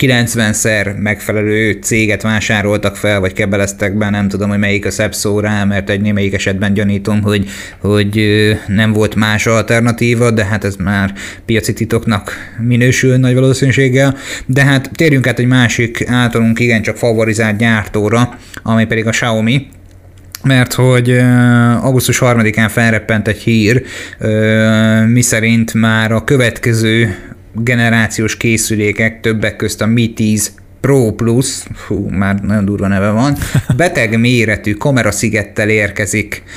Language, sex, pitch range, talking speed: Hungarian, male, 105-120 Hz, 135 wpm